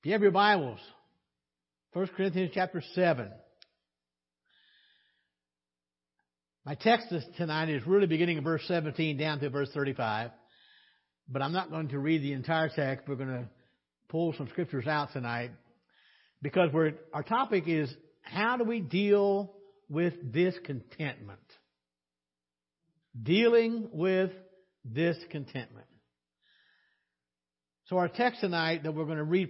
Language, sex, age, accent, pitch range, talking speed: English, male, 60-79, American, 120-185 Hz, 125 wpm